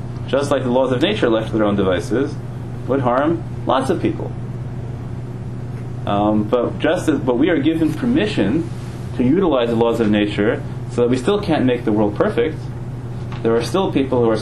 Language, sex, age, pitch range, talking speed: English, male, 30-49, 105-125 Hz, 190 wpm